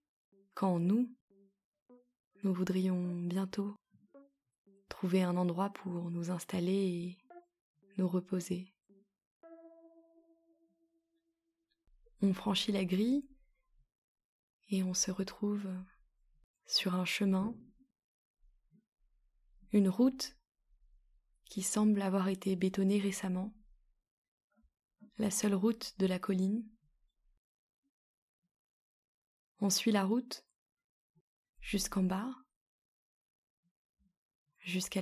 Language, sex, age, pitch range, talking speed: French, female, 20-39, 185-245 Hz, 80 wpm